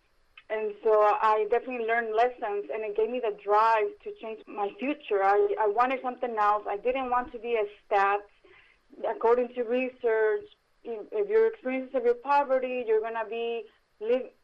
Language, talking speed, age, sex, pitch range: English, 175 wpm, 20-39, female, 215-275 Hz